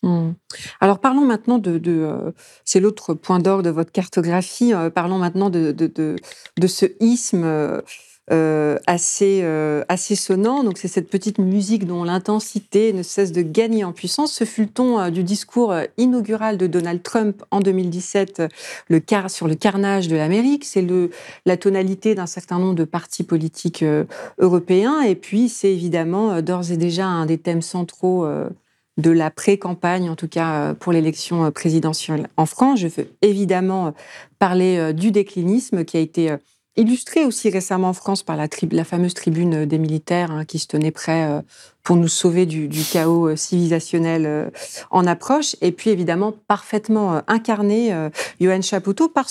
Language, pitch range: French, 165-210 Hz